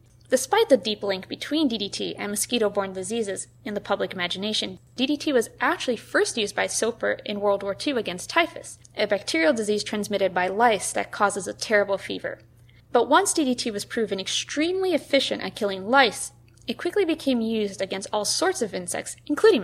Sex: female